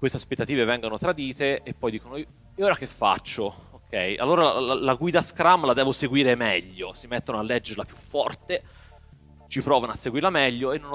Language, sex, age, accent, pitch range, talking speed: Italian, male, 30-49, native, 100-130 Hz, 185 wpm